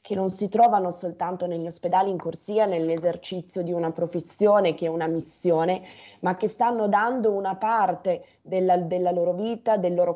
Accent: native